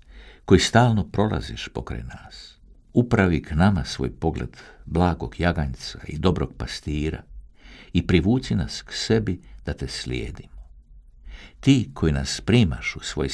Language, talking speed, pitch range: Croatian, 130 wpm, 70-100 Hz